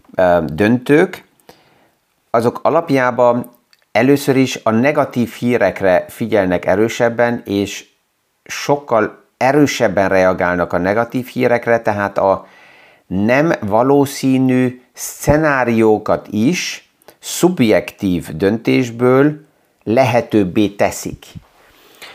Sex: male